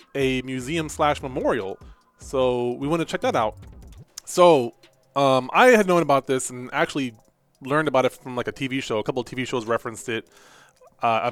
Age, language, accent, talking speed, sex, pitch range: 20-39, English, American, 180 wpm, male, 125-160 Hz